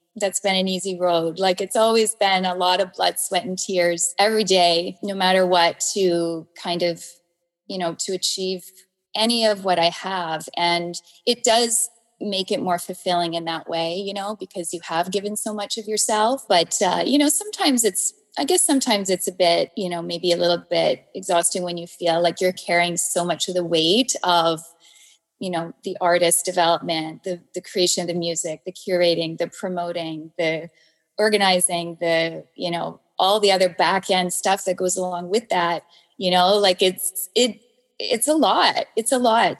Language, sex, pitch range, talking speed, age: English, female, 175-210 Hz, 190 wpm, 20-39